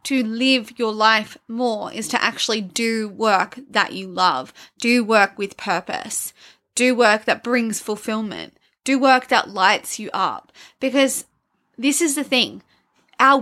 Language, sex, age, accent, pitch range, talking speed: English, female, 20-39, Australian, 220-275 Hz, 150 wpm